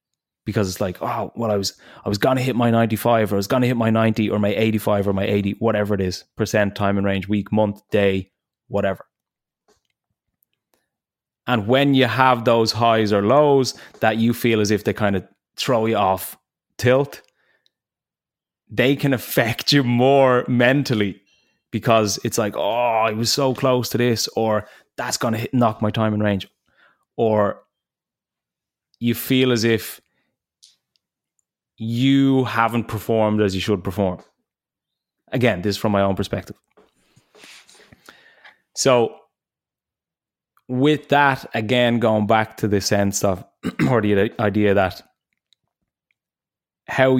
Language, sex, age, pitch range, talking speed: English, male, 20-39, 100-120 Hz, 150 wpm